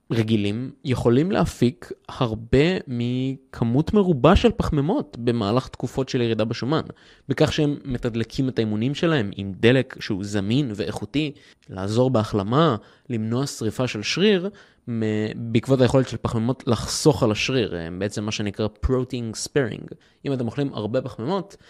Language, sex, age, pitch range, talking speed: Hebrew, male, 20-39, 110-140 Hz, 130 wpm